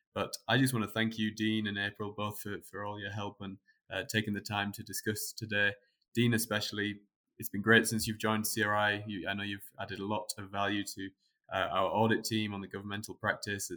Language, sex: English, male